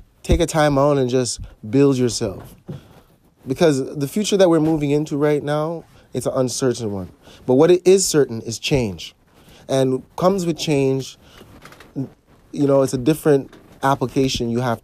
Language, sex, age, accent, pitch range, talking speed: English, male, 20-39, American, 115-140 Hz, 160 wpm